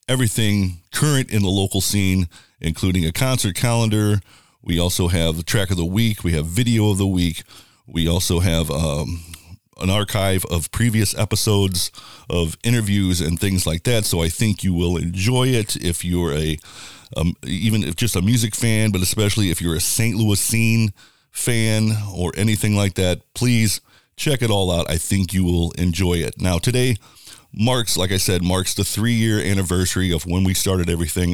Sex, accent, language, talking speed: male, American, English, 180 wpm